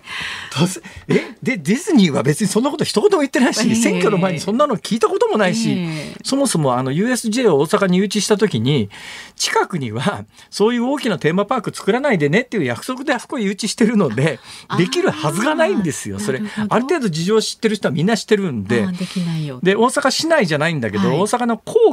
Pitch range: 165-230 Hz